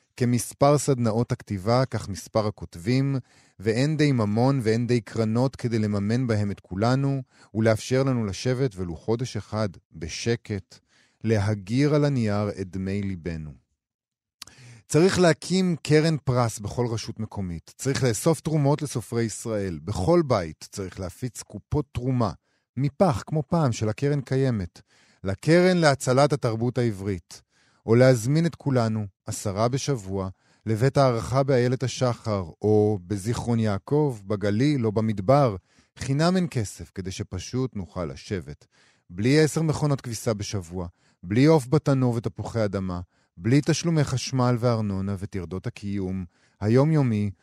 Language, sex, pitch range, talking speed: Hebrew, male, 100-130 Hz, 125 wpm